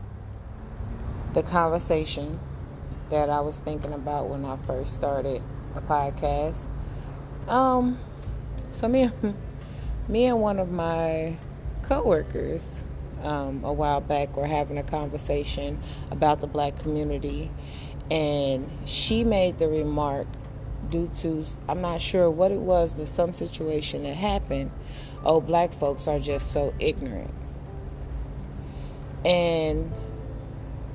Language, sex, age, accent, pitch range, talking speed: English, female, 20-39, American, 135-170 Hz, 115 wpm